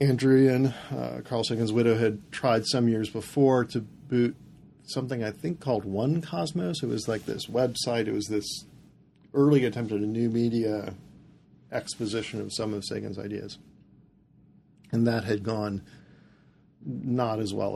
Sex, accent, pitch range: male, American, 105-130 Hz